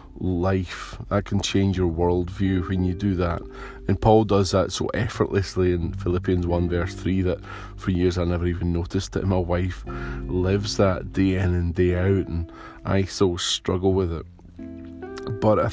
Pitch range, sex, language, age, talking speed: 90-100 Hz, male, English, 20-39, 175 wpm